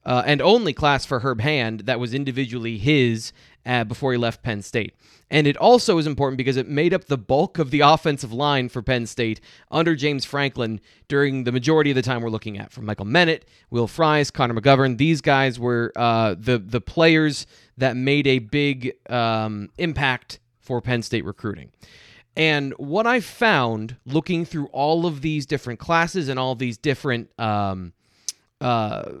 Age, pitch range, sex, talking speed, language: 20-39, 120-155 Hz, male, 180 wpm, English